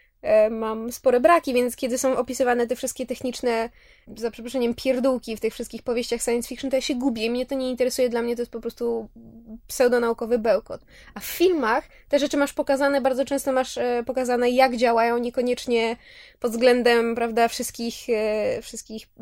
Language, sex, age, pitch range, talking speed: Polish, female, 20-39, 235-265 Hz, 170 wpm